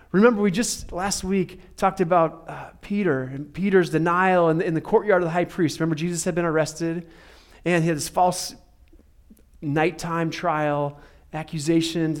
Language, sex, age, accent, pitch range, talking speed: English, male, 30-49, American, 150-195 Hz, 160 wpm